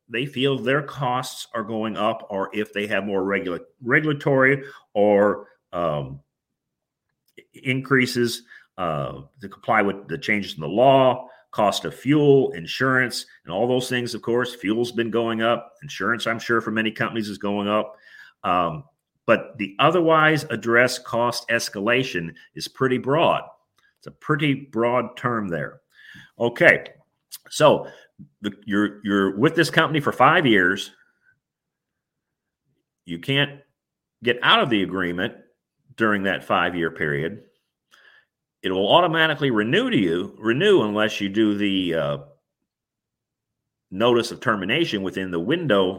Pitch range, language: 100-130 Hz, English